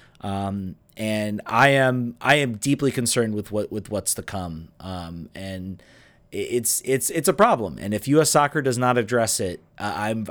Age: 30-49